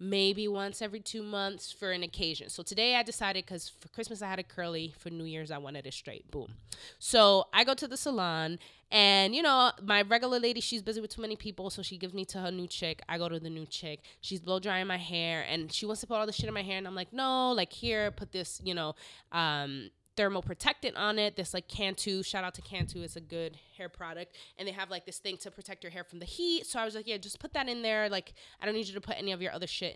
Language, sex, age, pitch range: English, female, 20-39, 180-235 Hz